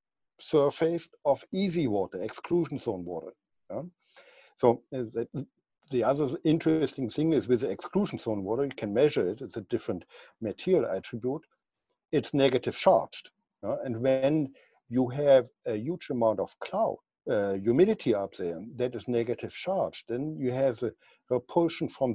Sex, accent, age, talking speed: male, German, 60-79, 155 wpm